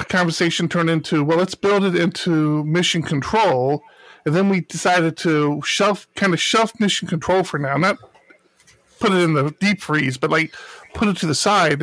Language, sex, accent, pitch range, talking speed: English, male, American, 150-195 Hz, 190 wpm